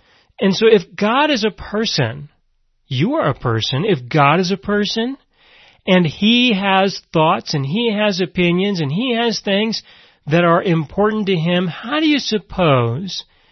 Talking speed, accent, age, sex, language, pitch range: 165 wpm, American, 40-59, male, English, 155-205 Hz